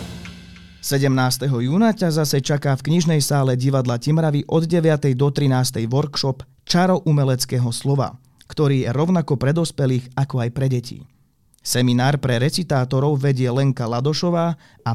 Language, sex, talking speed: Slovak, male, 130 wpm